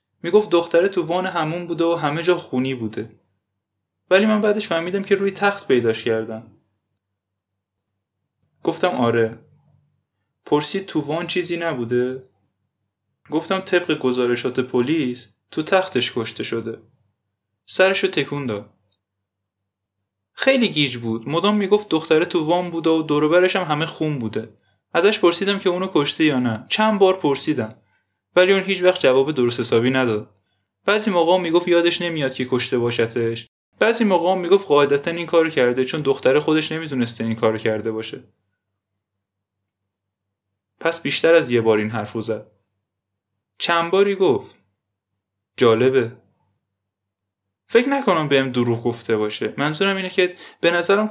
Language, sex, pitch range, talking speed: Persian, male, 105-170 Hz, 145 wpm